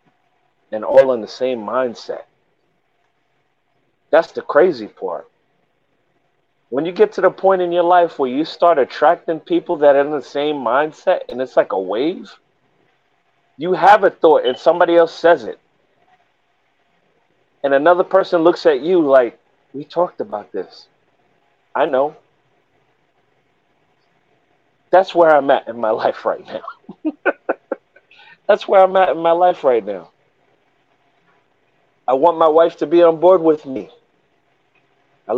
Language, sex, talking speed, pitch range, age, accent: English, male, 145 wpm, 140-175 Hz, 40-59, American